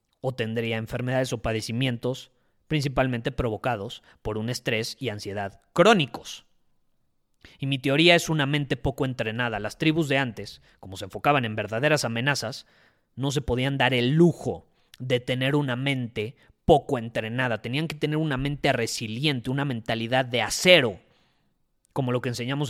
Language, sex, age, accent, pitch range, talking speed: Spanish, male, 30-49, Mexican, 125-165 Hz, 150 wpm